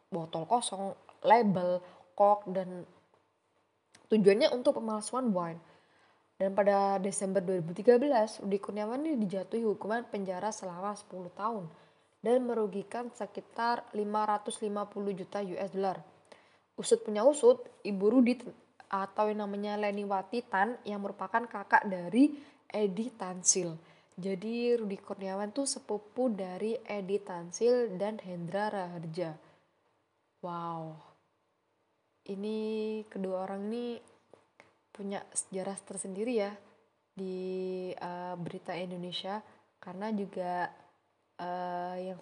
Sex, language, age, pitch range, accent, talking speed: female, Indonesian, 20-39, 185-215 Hz, native, 105 wpm